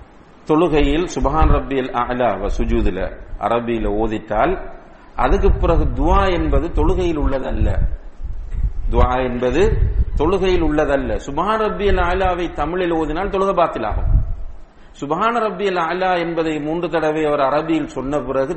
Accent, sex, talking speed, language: Indian, male, 100 wpm, English